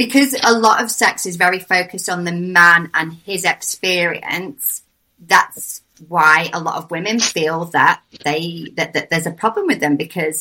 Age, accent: 30-49, British